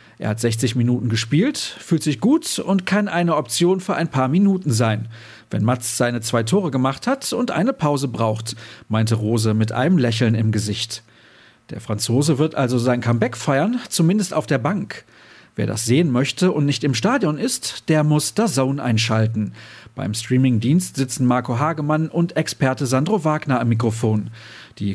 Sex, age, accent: male, 40-59, German